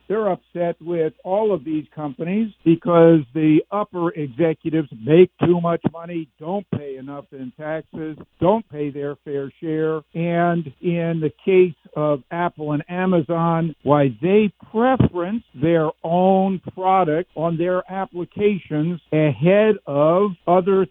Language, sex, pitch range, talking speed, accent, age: English, male, 155-180 Hz, 130 wpm, American, 60-79